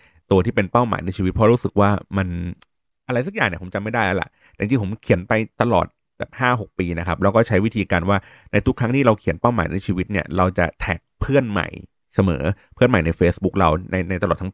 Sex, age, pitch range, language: male, 30-49, 95-115 Hz, Thai